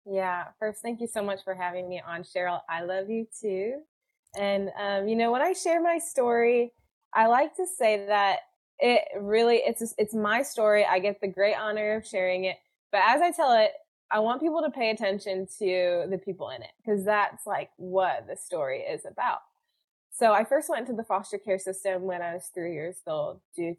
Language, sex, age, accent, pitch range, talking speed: English, female, 20-39, American, 190-235 Hz, 210 wpm